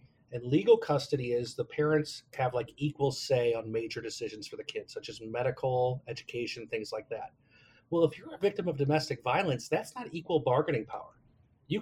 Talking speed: 190 wpm